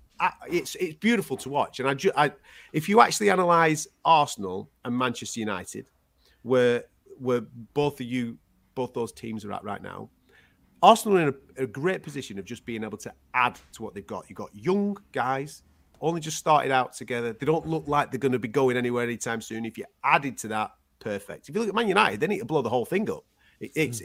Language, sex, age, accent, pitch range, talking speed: English, male, 30-49, British, 100-140 Hz, 225 wpm